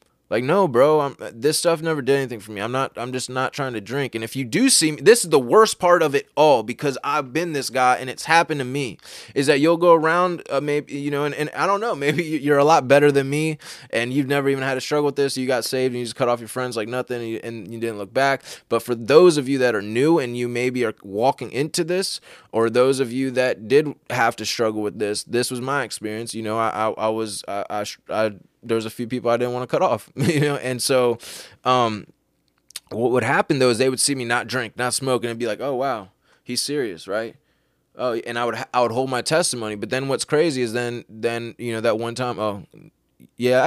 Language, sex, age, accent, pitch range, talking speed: English, male, 20-39, American, 115-140 Hz, 265 wpm